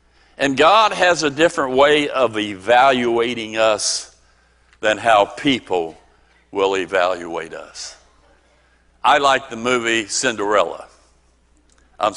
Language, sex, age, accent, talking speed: English, male, 60-79, American, 105 wpm